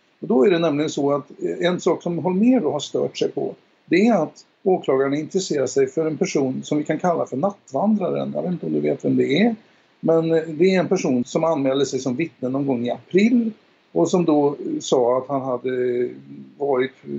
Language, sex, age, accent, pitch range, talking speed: Swedish, male, 60-79, native, 135-165 Hz, 215 wpm